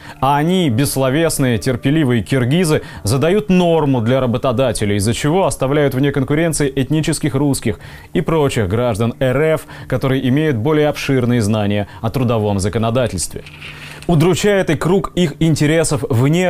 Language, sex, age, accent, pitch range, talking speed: Russian, male, 20-39, native, 115-145 Hz, 125 wpm